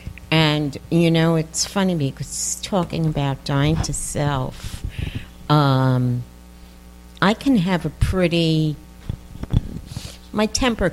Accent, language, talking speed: American, English, 100 wpm